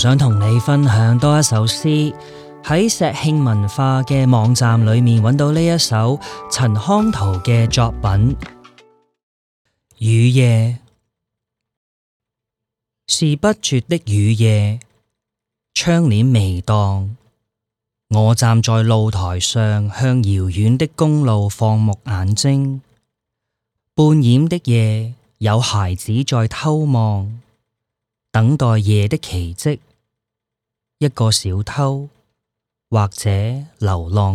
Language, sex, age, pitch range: English, male, 20-39, 110-125 Hz